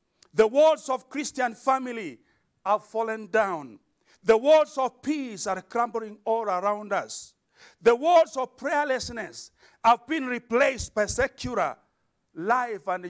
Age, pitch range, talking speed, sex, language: 50-69, 225-285 Hz, 130 wpm, male, English